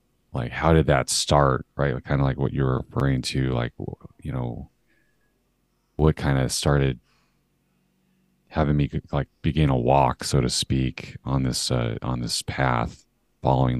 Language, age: English, 30-49